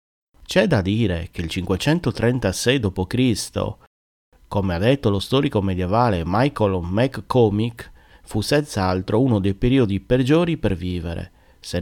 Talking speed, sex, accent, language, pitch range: 120 wpm, male, native, Italian, 90-125 Hz